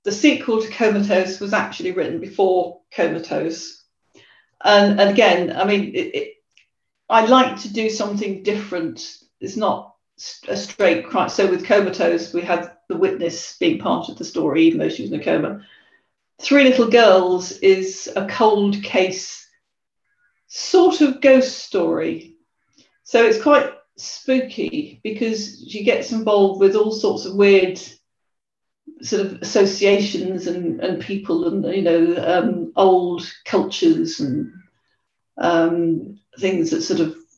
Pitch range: 185-280 Hz